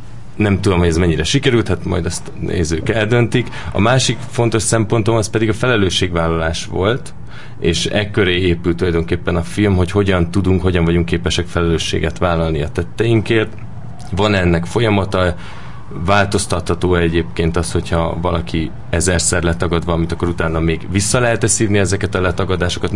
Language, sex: Hungarian, male